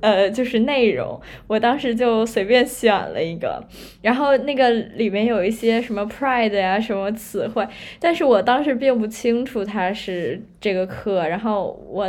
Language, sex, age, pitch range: Chinese, female, 10-29, 205-245 Hz